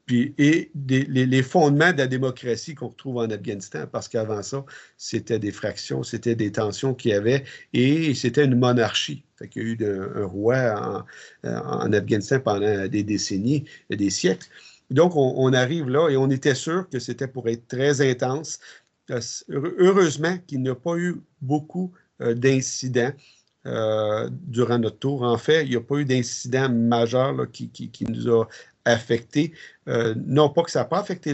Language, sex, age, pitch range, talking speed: French, male, 50-69, 110-135 Hz, 180 wpm